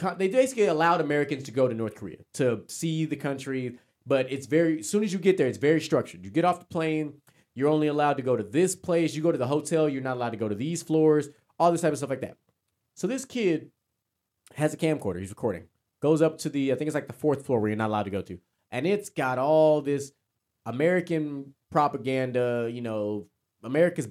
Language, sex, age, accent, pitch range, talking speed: English, male, 30-49, American, 110-160 Hz, 235 wpm